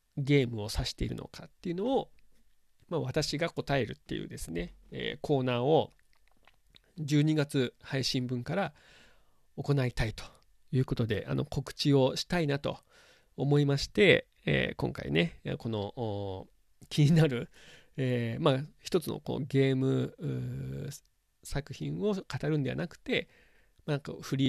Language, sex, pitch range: Japanese, male, 120-155 Hz